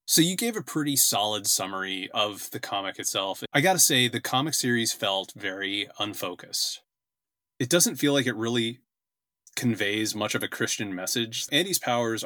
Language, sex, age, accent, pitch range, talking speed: English, male, 30-49, American, 105-130 Hz, 170 wpm